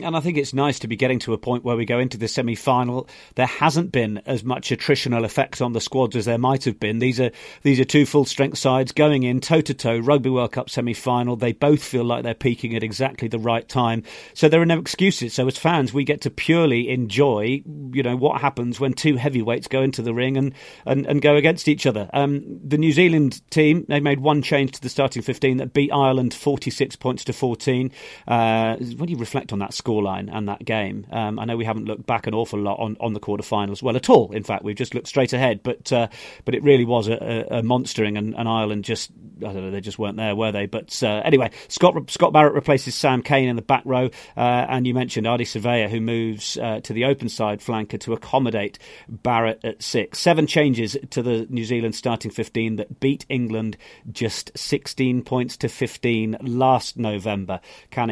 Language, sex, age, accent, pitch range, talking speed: English, male, 40-59, British, 115-140 Hz, 225 wpm